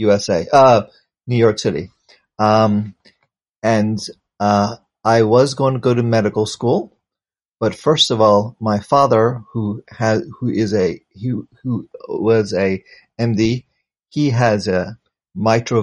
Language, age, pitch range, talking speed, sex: English, 30-49, 105-130 Hz, 140 wpm, male